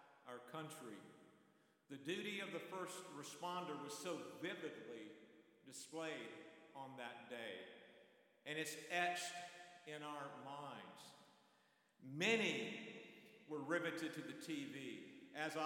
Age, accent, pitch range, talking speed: 50-69, American, 150-195 Hz, 105 wpm